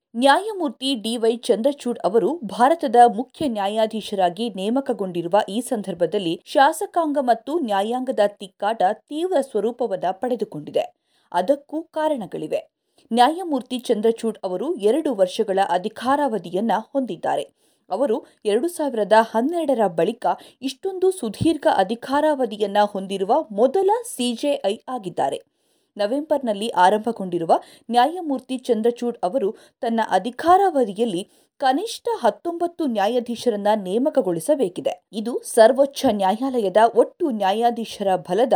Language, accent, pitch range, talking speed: Kannada, native, 205-290 Hz, 85 wpm